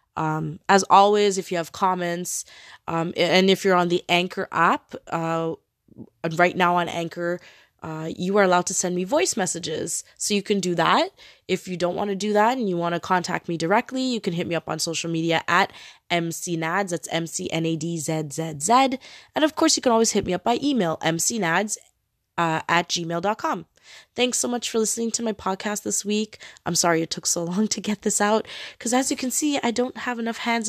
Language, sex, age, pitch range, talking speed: English, female, 20-39, 170-225 Hz, 205 wpm